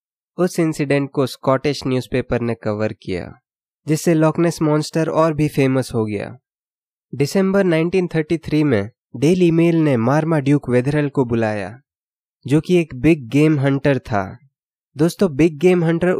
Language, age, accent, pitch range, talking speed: Hindi, 20-39, native, 130-165 Hz, 140 wpm